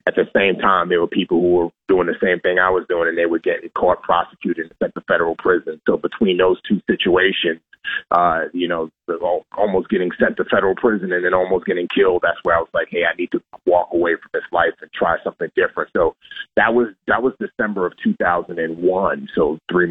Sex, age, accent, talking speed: male, 30-49, American, 225 wpm